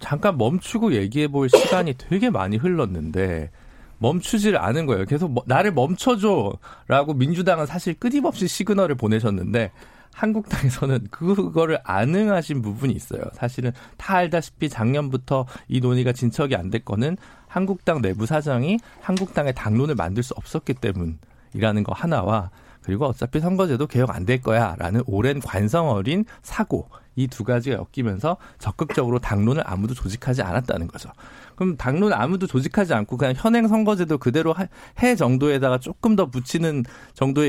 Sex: male